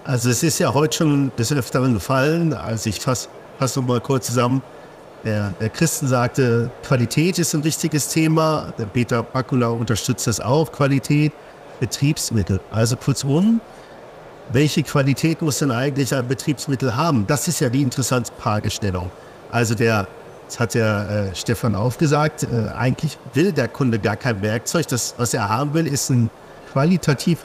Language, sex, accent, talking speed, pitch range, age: German, male, German, 165 wpm, 120-160 Hz, 50-69